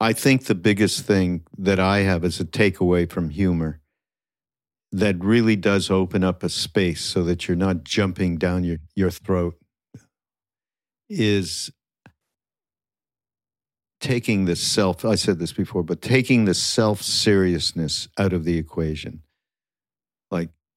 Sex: male